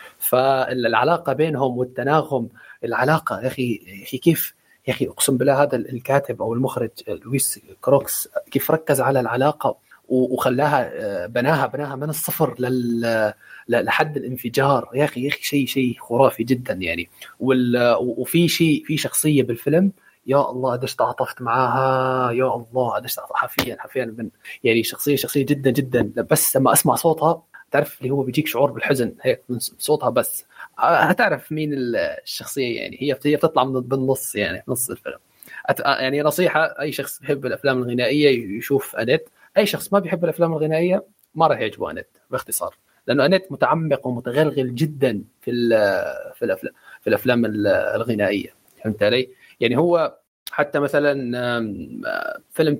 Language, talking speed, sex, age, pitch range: Arabic, 140 wpm, male, 20-39, 125-155 Hz